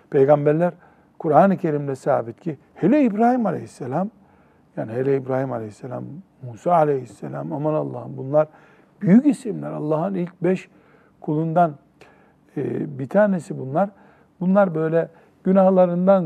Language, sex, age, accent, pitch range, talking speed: Turkish, male, 60-79, native, 145-180 Hz, 105 wpm